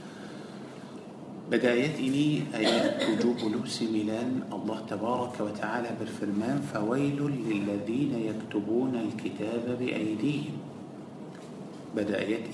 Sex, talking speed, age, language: male, 70 wpm, 50-69, Malay